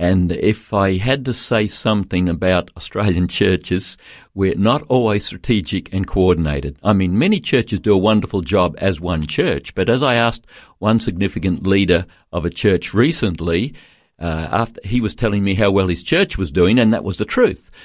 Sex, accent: male, Australian